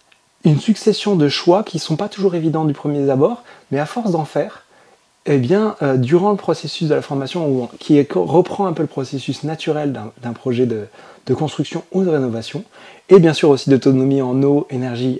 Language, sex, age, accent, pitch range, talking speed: French, male, 30-49, French, 125-165 Hz, 215 wpm